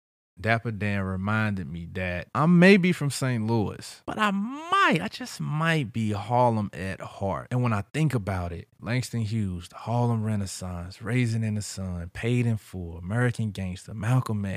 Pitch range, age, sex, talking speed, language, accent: 100-120 Hz, 20-39, male, 175 wpm, English, American